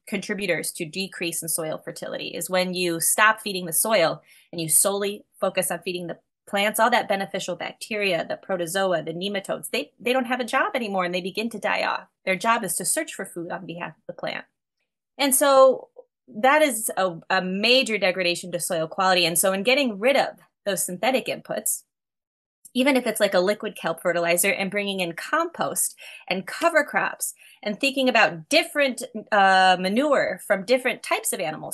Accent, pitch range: American, 180-240 Hz